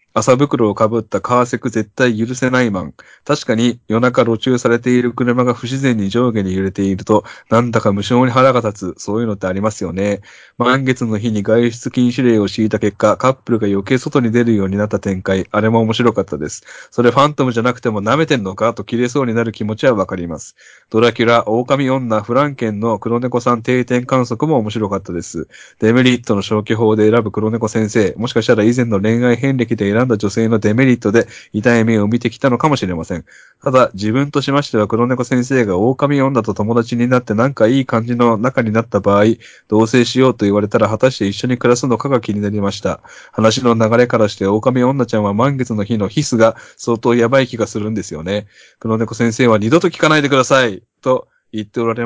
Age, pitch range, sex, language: 20-39, 105-125 Hz, male, Japanese